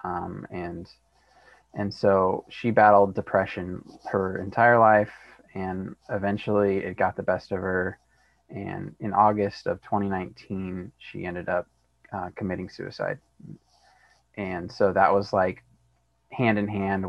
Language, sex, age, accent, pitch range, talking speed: English, male, 20-39, American, 95-105 Hz, 130 wpm